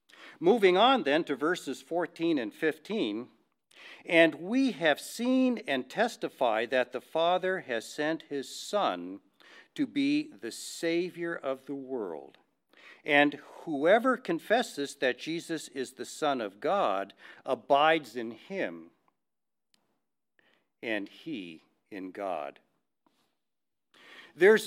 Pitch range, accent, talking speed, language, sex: 125-185 Hz, American, 110 wpm, English, male